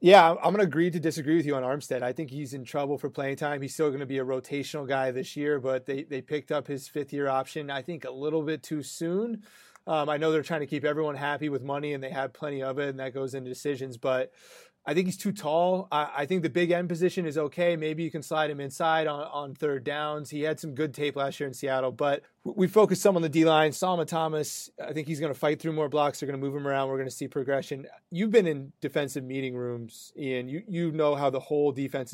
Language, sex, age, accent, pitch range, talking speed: English, male, 30-49, American, 140-165 Hz, 265 wpm